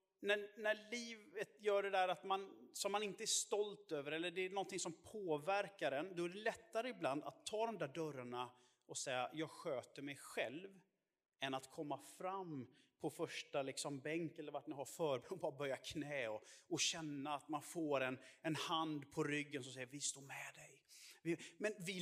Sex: male